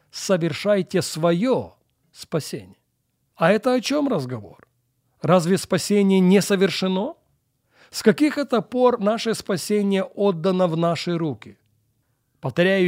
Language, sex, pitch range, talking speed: Russian, male, 145-190 Hz, 105 wpm